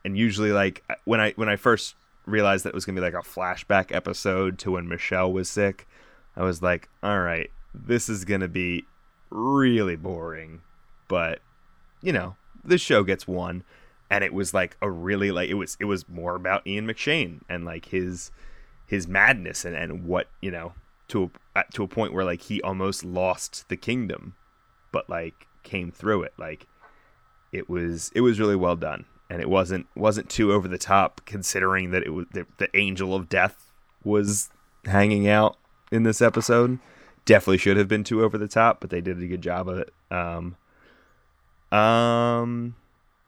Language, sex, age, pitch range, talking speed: English, male, 20-39, 90-105 Hz, 185 wpm